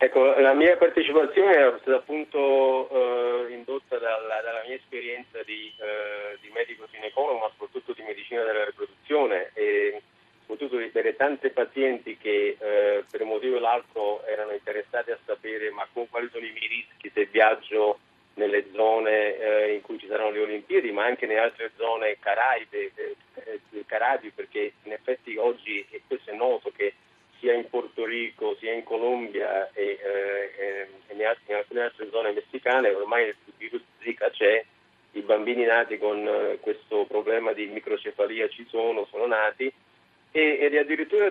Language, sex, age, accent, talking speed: Italian, male, 40-59, native, 155 wpm